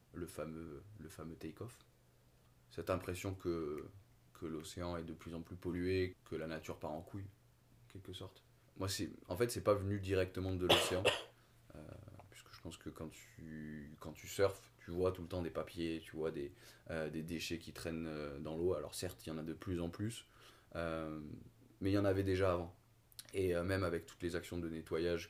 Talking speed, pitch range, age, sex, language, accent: 215 wpm, 85-100 Hz, 20-39, male, French, French